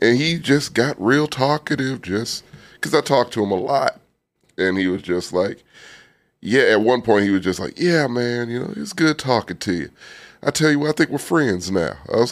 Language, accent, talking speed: English, American, 230 wpm